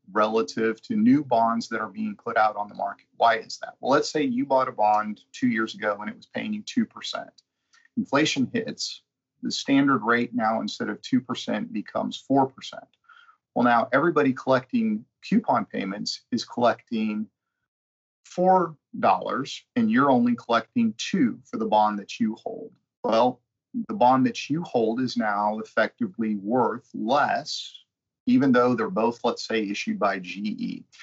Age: 40-59